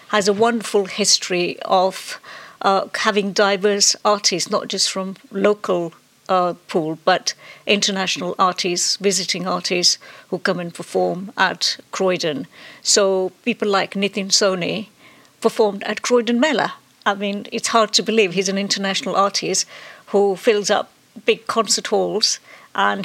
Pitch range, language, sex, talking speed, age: 185-215 Hz, English, female, 135 wpm, 60-79